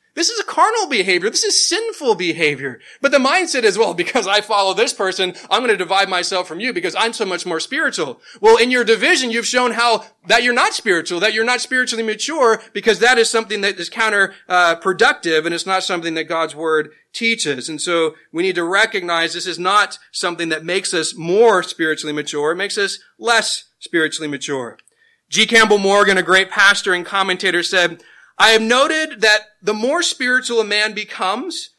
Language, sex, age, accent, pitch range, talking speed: English, male, 30-49, American, 185-250 Hz, 200 wpm